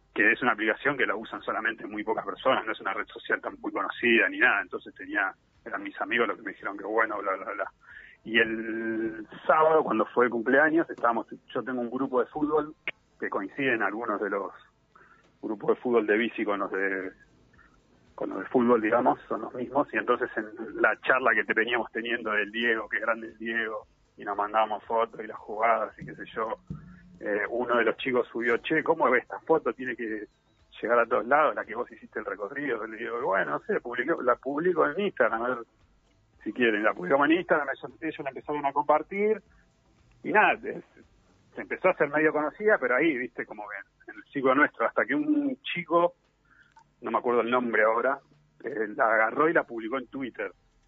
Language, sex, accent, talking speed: Spanish, male, Argentinian, 210 wpm